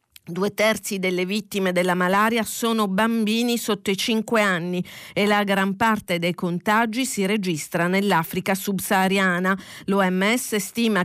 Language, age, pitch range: Italian, 40-59, 180-215 Hz